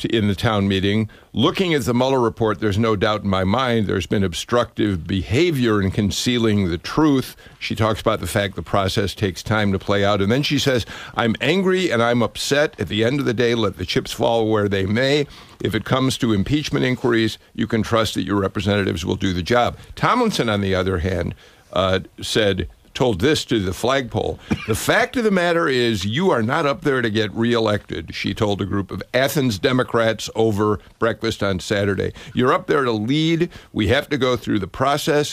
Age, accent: 50-69, American